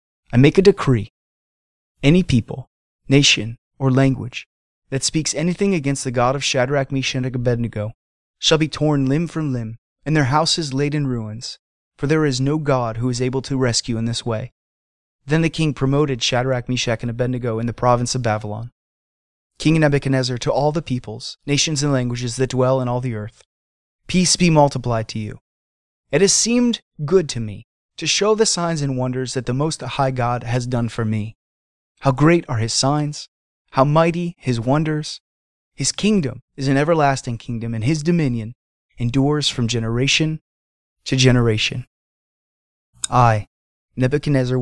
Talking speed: 165 wpm